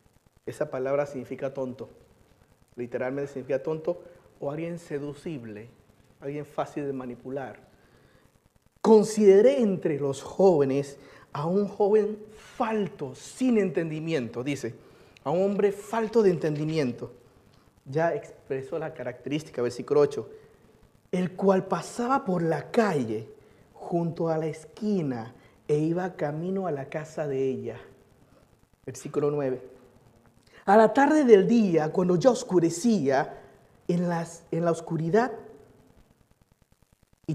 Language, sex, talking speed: Spanish, male, 115 wpm